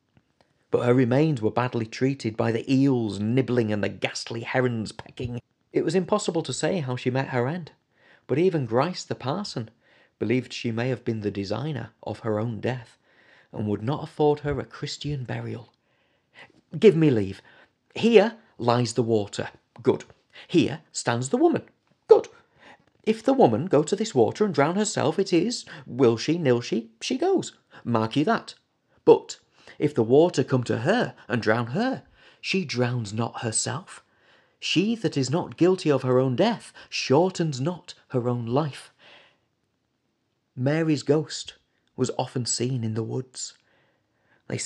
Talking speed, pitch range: 160 wpm, 115-155 Hz